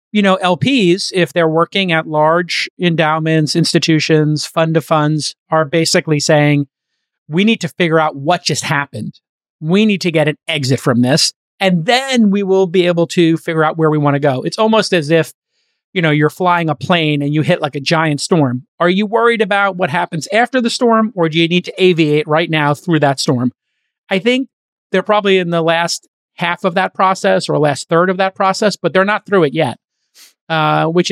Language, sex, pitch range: English, male, 150-185 Hz